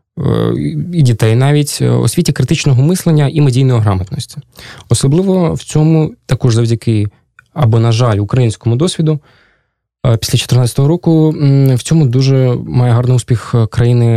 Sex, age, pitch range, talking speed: male, 20-39, 115-145 Hz, 125 wpm